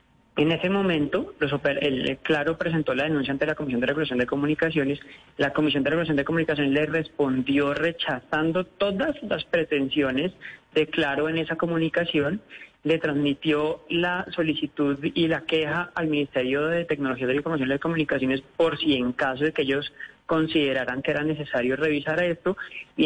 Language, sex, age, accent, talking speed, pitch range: Spanish, male, 30-49, Colombian, 165 wpm, 145-185 Hz